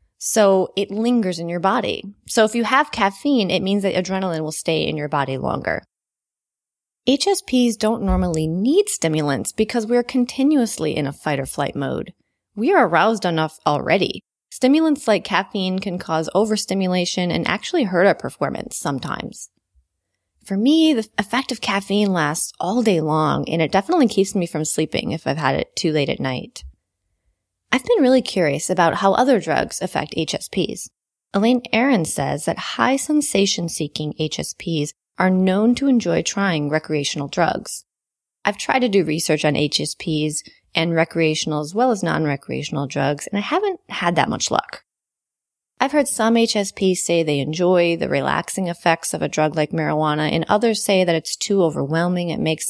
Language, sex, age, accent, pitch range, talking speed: English, female, 20-39, American, 155-225 Hz, 165 wpm